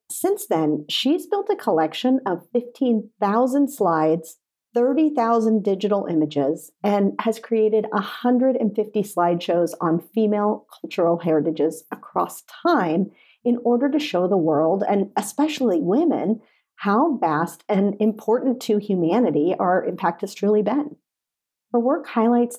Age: 40-59